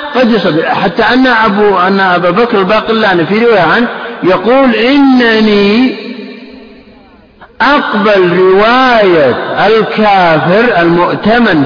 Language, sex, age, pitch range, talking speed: Arabic, male, 50-69, 180-255 Hz, 95 wpm